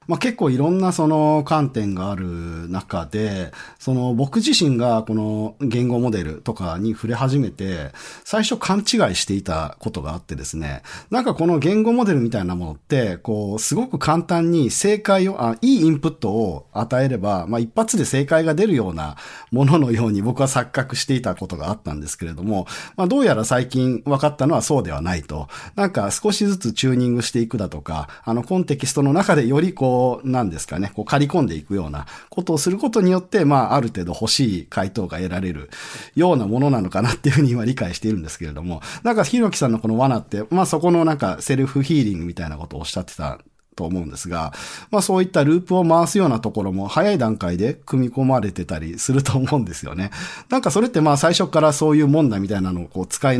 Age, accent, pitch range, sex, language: 40-59, native, 95-155 Hz, male, Japanese